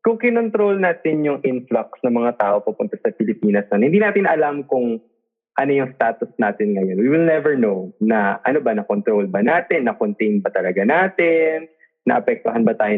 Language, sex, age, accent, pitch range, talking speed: Filipino, male, 20-39, native, 110-175 Hz, 175 wpm